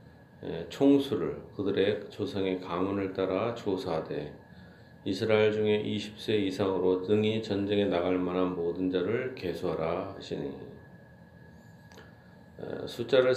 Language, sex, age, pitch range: Korean, male, 40-59, 95-105 Hz